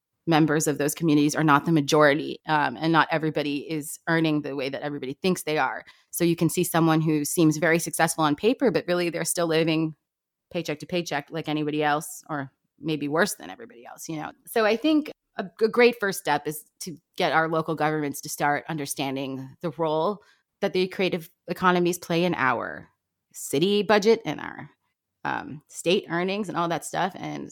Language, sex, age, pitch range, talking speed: English, female, 30-49, 150-175 Hz, 195 wpm